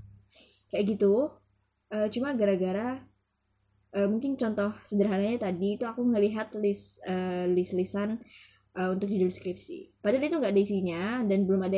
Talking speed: 150 wpm